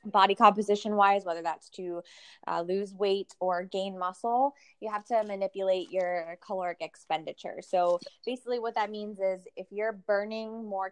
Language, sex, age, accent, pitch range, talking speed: English, female, 20-39, American, 180-215 Hz, 160 wpm